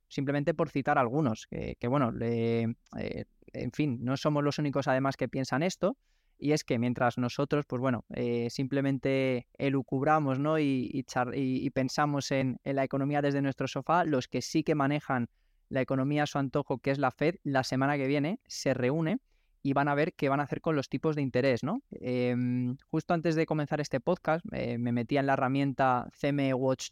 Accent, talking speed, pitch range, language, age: Spanish, 205 wpm, 130-155 Hz, Spanish, 20-39